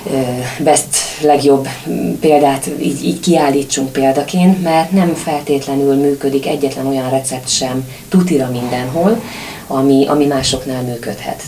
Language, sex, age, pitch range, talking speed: Hungarian, female, 30-49, 135-160 Hz, 110 wpm